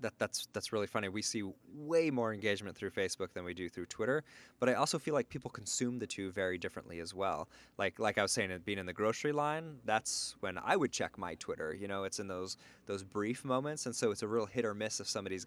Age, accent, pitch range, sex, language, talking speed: 20-39, American, 95-120 Hz, male, English, 250 wpm